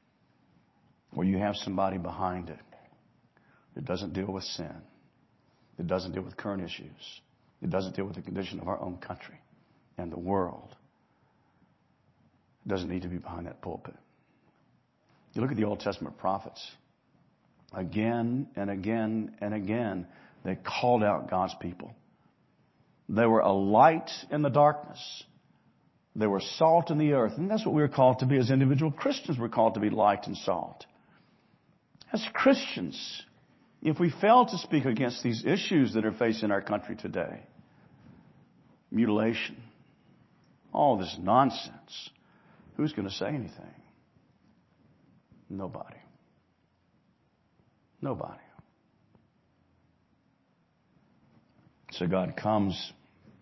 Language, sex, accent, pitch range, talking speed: English, male, American, 95-135 Hz, 130 wpm